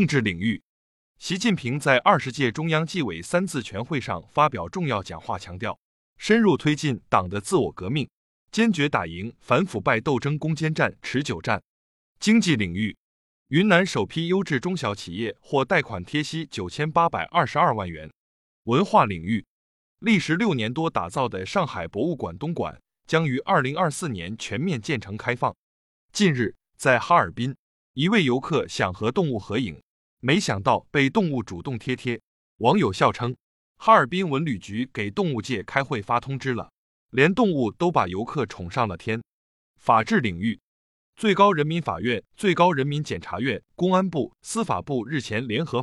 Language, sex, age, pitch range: Chinese, male, 20-39, 110-165 Hz